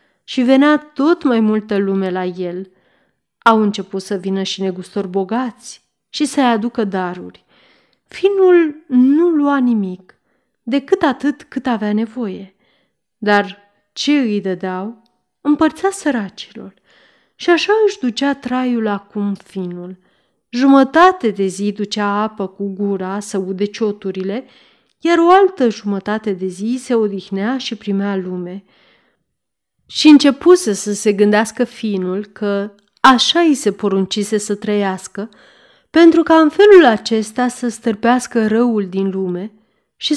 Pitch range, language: 195-265 Hz, Romanian